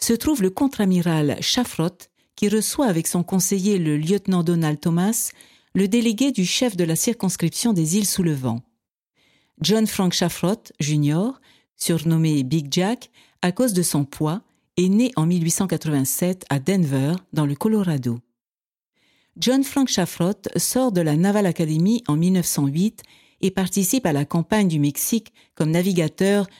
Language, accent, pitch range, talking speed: French, French, 160-215 Hz, 150 wpm